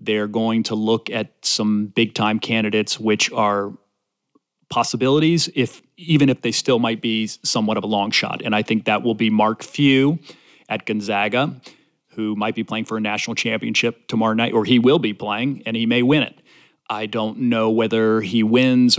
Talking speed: 185 wpm